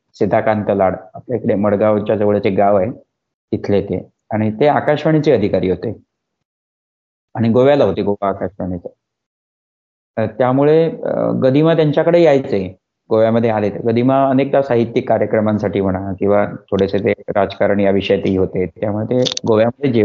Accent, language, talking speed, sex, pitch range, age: native, Marathi, 125 wpm, male, 105-135 Hz, 30-49